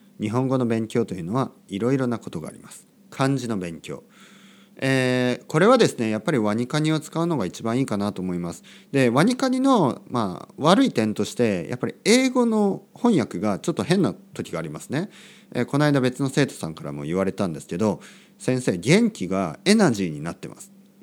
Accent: native